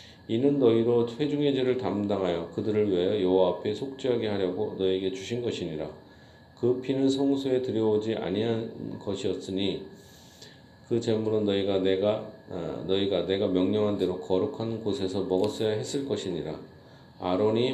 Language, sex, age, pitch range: Korean, male, 40-59, 95-120 Hz